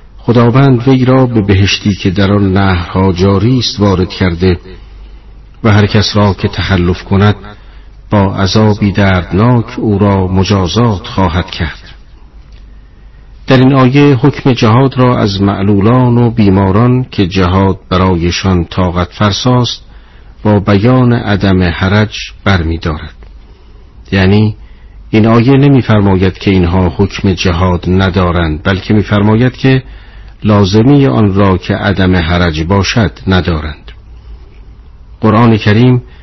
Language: Persian